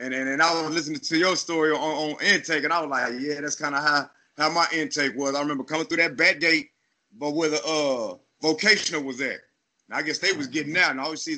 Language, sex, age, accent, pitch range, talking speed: English, male, 30-49, American, 135-160 Hz, 265 wpm